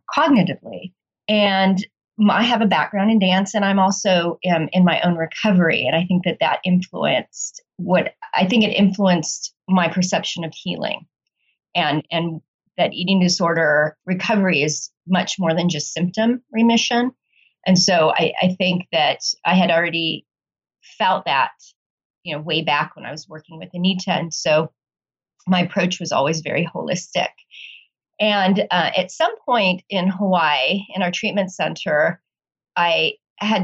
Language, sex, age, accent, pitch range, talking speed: English, female, 30-49, American, 175-220 Hz, 155 wpm